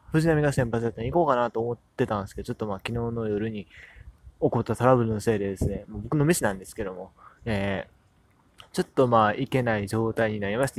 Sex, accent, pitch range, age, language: male, native, 110-145 Hz, 20-39, Japanese